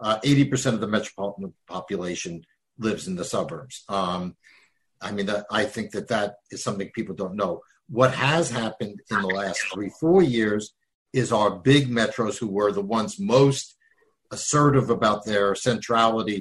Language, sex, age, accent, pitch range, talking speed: English, male, 60-79, American, 110-130 Hz, 160 wpm